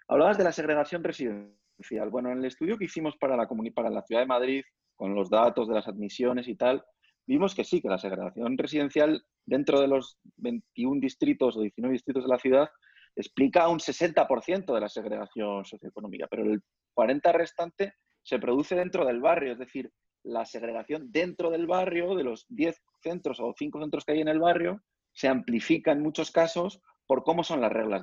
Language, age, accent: Spanish, 30-49, Spanish